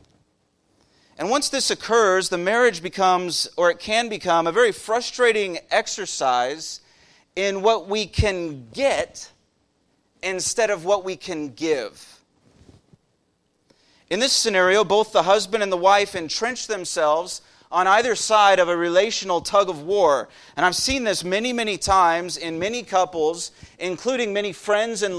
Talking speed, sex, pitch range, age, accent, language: 145 wpm, male, 175-215 Hz, 30-49, American, English